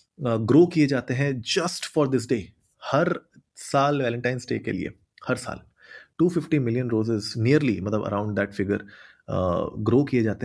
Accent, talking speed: native, 155 wpm